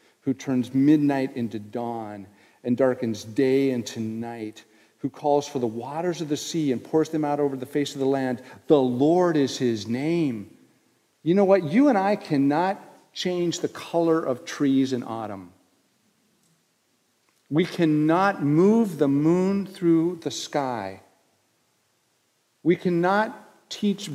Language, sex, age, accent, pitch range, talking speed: English, male, 50-69, American, 125-170 Hz, 145 wpm